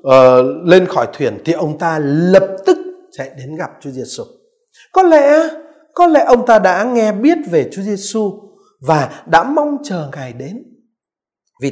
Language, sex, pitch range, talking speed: Vietnamese, male, 180-275 Hz, 170 wpm